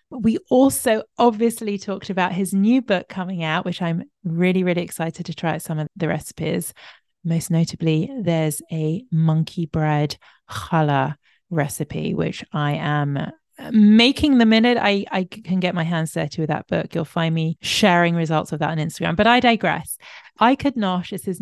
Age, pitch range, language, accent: 30-49, 170-205 Hz, English, British